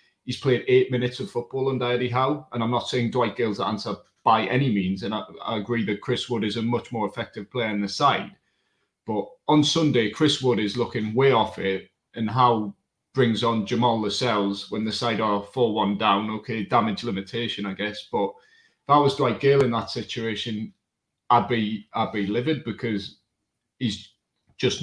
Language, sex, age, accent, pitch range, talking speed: English, male, 30-49, British, 110-135 Hz, 195 wpm